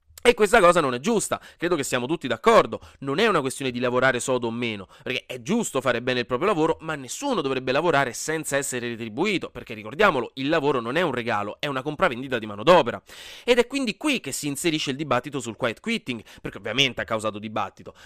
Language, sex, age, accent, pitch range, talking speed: Italian, male, 30-49, native, 125-190 Hz, 220 wpm